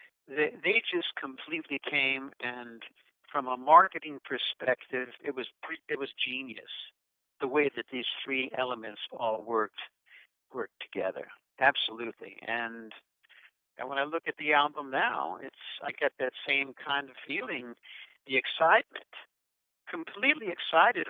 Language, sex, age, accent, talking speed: English, male, 60-79, American, 130 wpm